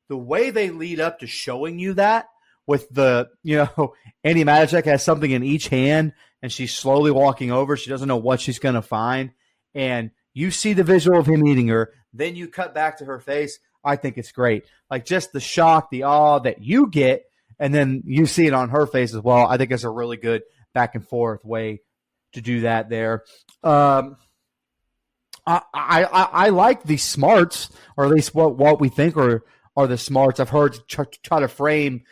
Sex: male